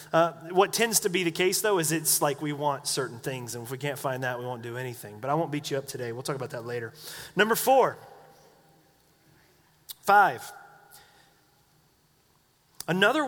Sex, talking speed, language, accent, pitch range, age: male, 185 wpm, English, American, 155-200 Hz, 30-49